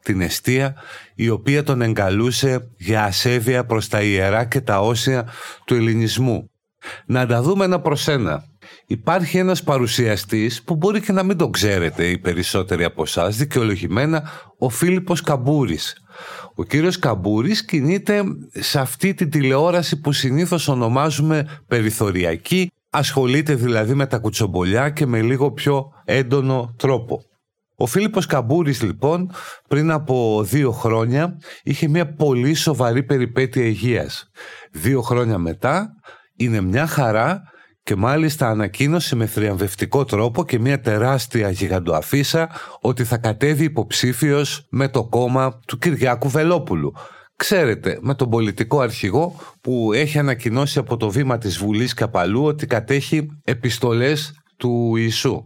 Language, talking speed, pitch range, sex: Greek, 130 wpm, 115-150 Hz, male